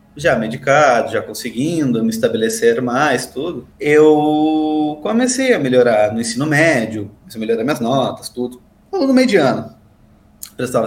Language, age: Portuguese, 20-39